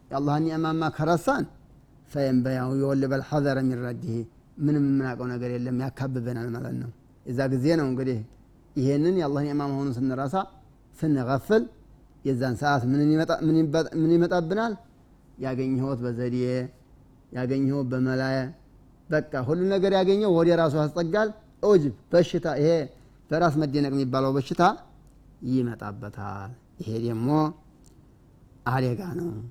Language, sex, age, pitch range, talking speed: Amharic, male, 30-49, 130-160 Hz, 115 wpm